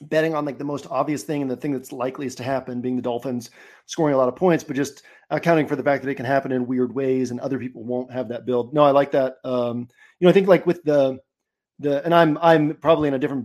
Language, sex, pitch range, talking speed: English, male, 125-150 Hz, 275 wpm